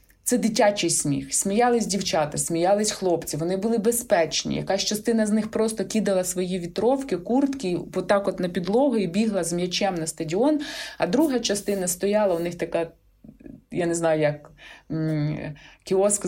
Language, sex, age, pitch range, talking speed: Ukrainian, female, 20-39, 170-230 Hz, 150 wpm